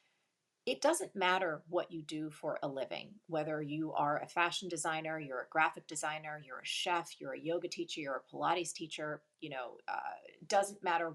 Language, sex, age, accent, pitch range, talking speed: English, female, 30-49, American, 150-180 Hz, 195 wpm